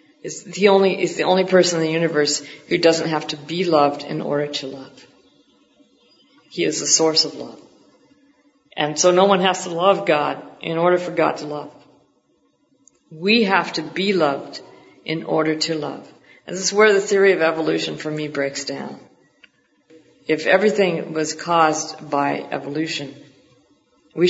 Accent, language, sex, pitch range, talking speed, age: American, English, female, 145-180 Hz, 170 wpm, 50-69